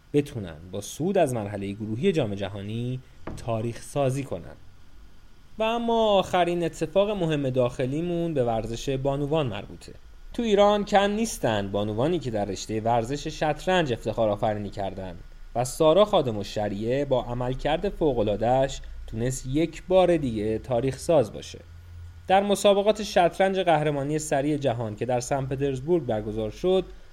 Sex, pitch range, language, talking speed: male, 105-160 Hz, Persian, 135 wpm